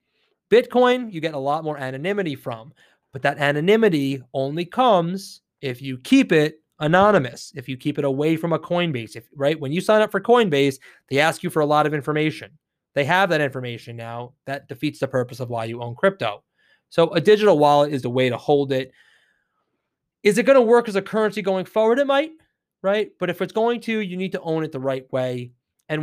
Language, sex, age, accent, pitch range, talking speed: English, male, 30-49, American, 135-190 Hz, 210 wpm